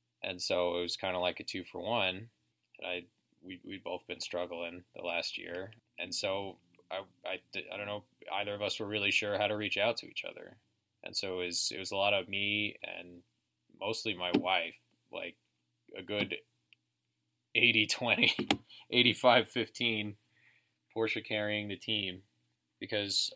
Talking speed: 160 wpm